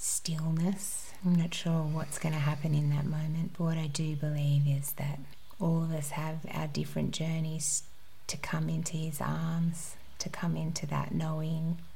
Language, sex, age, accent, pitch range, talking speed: English, female, 30-49, Australian, 150-165 Hz, 175 wpm